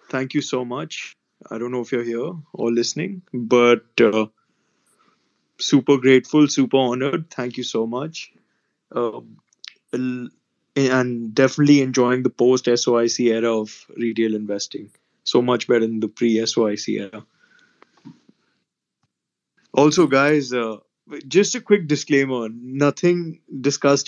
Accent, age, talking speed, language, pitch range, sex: native, 20-39, 125 wpm, Hindi, 115-140 Hz, male